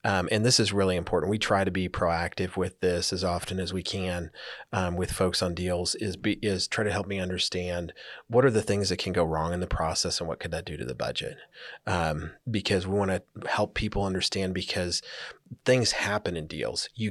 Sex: male